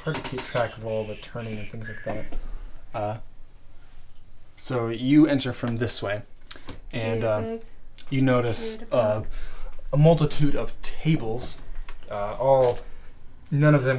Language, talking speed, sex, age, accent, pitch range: English, 140 wpm, male, 20-39, American, 105-125 Hz